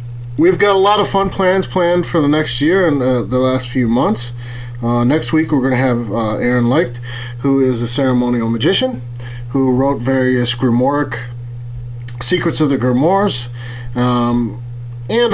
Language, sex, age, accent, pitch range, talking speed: English, male, 30-49, American, 120-145 Hz, 165 wpm